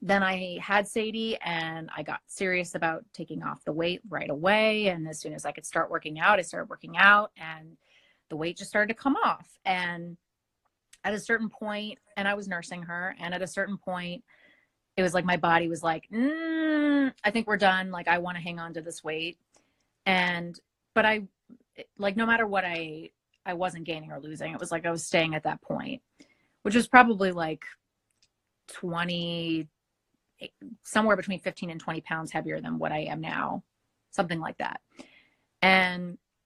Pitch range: 170-210 Hz